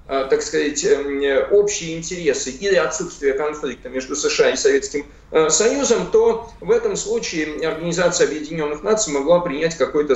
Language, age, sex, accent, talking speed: Russian, 50-69, male, native, 130 wpm